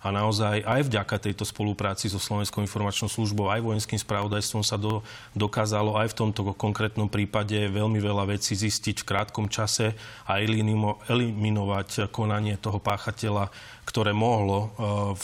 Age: 30-49